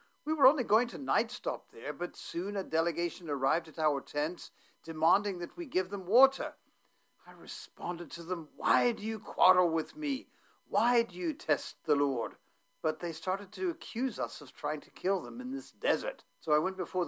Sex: male